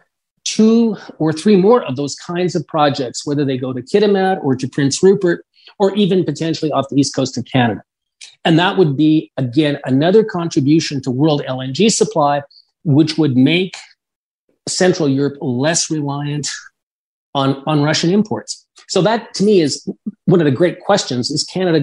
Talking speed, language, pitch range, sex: 170 wpm, English, 135-180 Hz, male